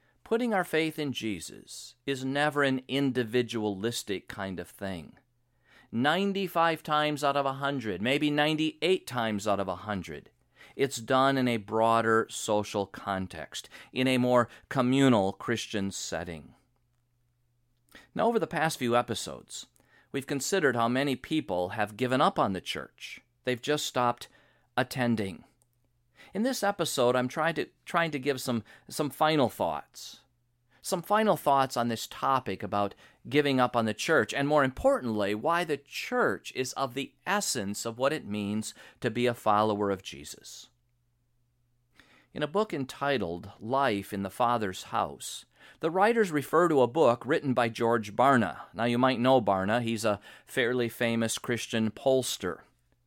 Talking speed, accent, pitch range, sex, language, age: 150 wpm, American, 115-140 Hz, male, English, 40-59